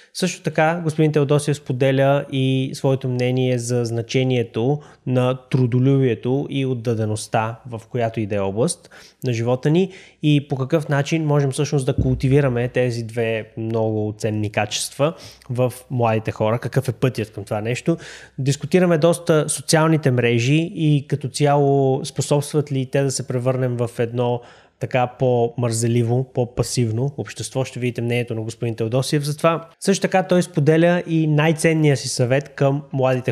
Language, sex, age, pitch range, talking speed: Bulgarian, male, 20-39, 115-145 Hz, 150 wpm